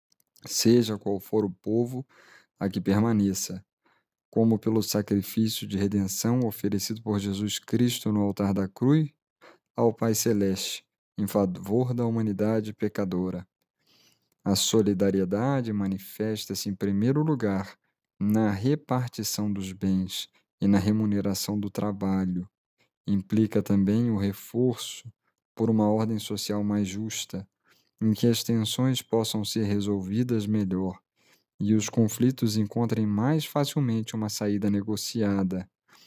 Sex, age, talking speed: male, 20-39, 120 wpm